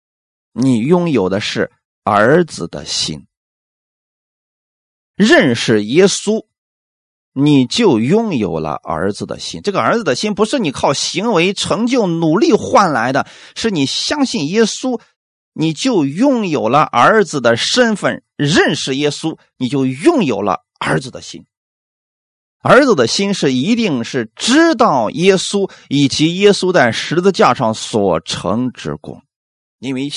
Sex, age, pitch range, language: male, 30-49, 145-225 Hz, Chinese